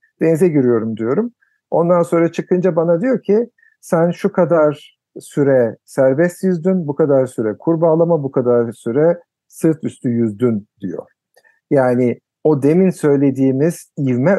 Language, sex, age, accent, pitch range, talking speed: Turkish, male, 50-69, native, 120-170 Hz, 130 wpm